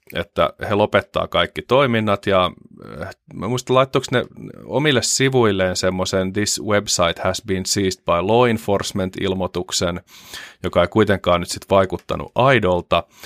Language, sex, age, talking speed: Finnish, male, 30-49, 130 wpm